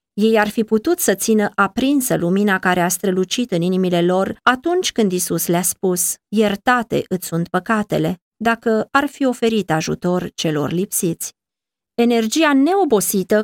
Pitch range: 180-230 Hz